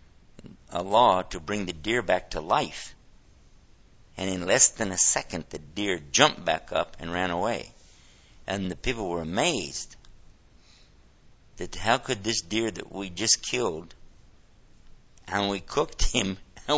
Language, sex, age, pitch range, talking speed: English, male, 60-79, 80-100 Hz, 150 wpm